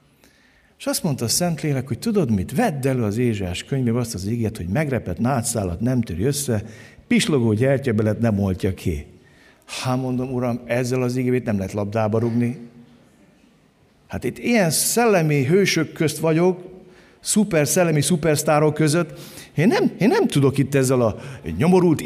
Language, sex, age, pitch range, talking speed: Hungarian, male, 50-69, 115-175 Hz, 155 wpm